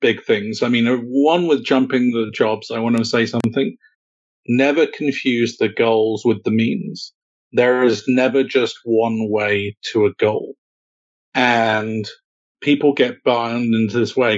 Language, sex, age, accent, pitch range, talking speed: English, male, 40-59, British, 115-155 Hz, 155 wpm